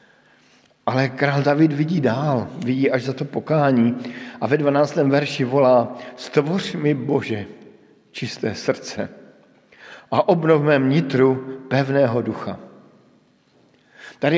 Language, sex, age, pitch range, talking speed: Slovak, male, 50-69, 125-155 Hz, 110 wpm